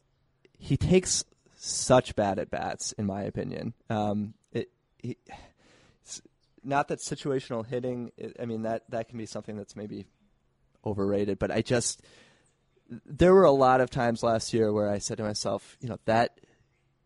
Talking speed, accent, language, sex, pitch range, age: 150 wpm, American, English, male, 105-125 Hz, 20-39